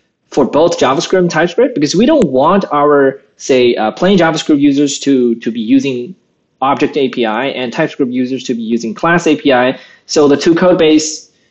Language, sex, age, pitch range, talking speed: English, male, 20-39, 130-180 Hz, 175 wpm